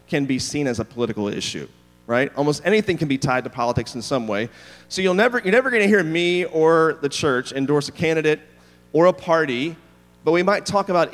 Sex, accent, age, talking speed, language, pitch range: male, American, 30-49, 220 wpm, English, 120-165 Hz